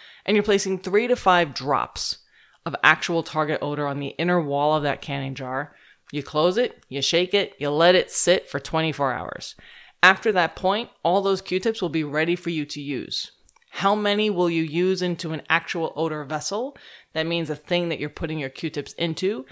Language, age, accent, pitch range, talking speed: English, 30-49, American, 150-195 Hz, 200 wpm